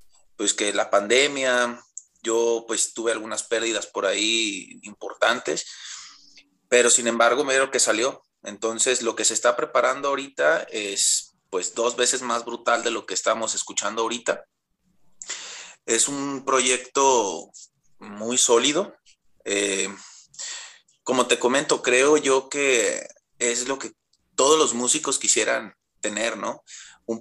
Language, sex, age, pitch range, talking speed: Spanish, male, 30-49, 110-140 Hz, 130 wpm